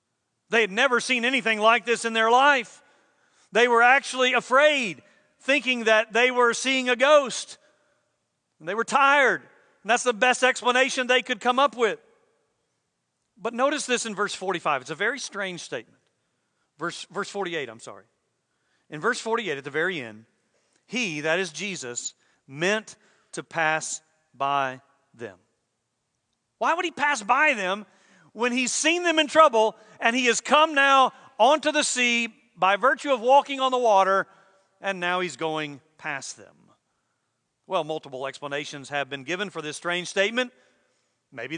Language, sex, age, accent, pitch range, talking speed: English, male, 40-59, American, 185-255 Hz, 160 wpm